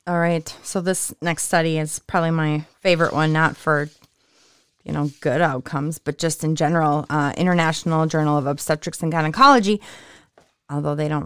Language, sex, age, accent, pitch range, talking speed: English, female, 30-49, American, 155-195 Hz, 165 wpm